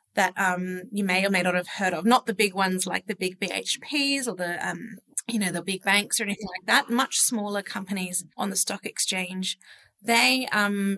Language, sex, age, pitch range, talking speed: English, female, 30-49, 185-225 Hz, 215 wpm